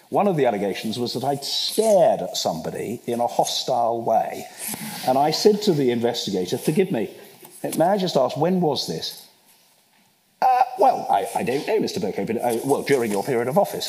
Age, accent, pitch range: 50-69, British, 115-155 Hz